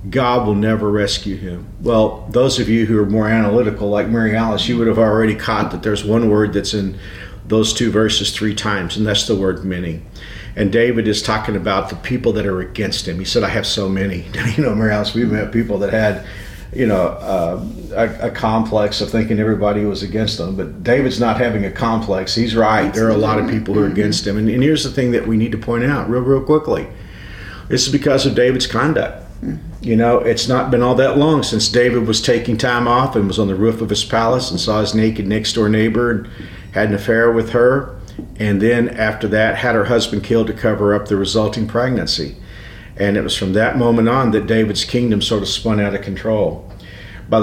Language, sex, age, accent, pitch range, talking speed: English, male, 50-69, American, 100-120 Hz, 225 wpm